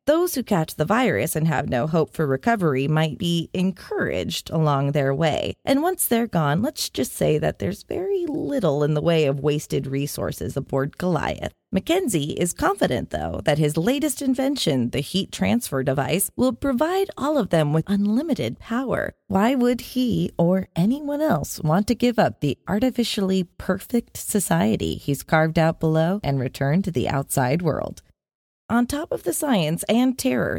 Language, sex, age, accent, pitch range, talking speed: English, female, 20-39, American, 155-235 Hz, 170 wpm